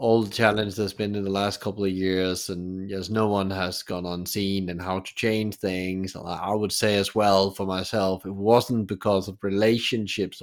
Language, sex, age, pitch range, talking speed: English, male, 30-49, 95-115 Hz, 200 wpm